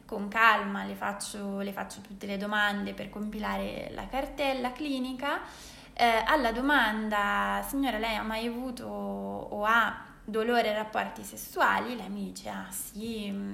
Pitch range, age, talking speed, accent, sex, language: 210-240 Hz, 20-39, 140 wpm, native, female, Italian